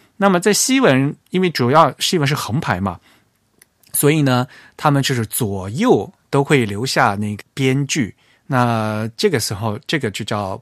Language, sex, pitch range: Chinese, male, 115-155 Hz